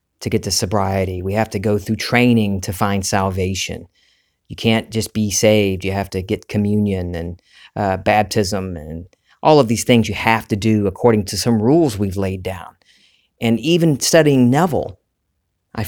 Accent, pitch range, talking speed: American, 100-125 Hz, 180 wpm